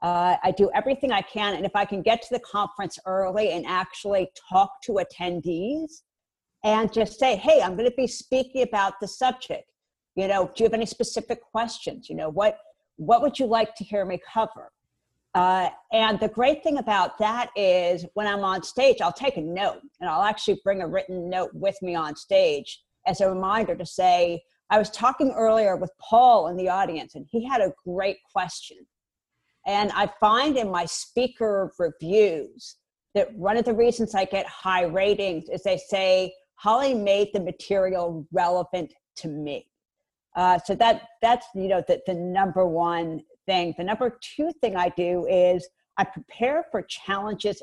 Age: 50-69